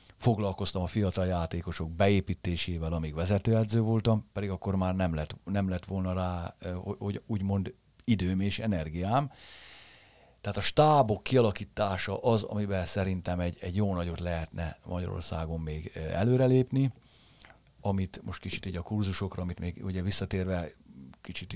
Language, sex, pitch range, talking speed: Hungarian, male, 85-105 Hz, 135 wpm